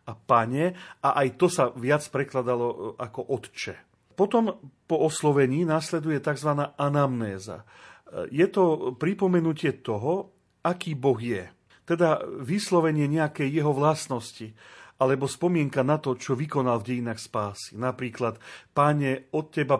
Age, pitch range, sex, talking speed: 40-59, 120-155 Hz, male, 125 wpm